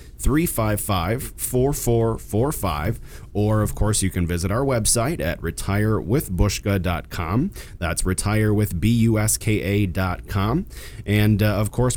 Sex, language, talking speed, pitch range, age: male, English, 80 wpm, 85-110 Hz, 30-49